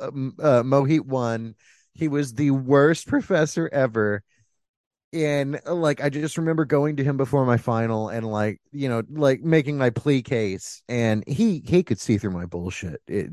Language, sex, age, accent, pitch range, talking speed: English, male, 30-49, American, 105-150 Hz, 175 wpm